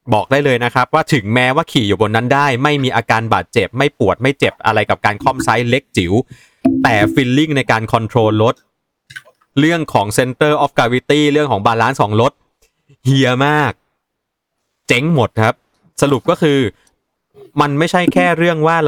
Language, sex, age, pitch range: Thai, male, 20-39, 105-140 Hz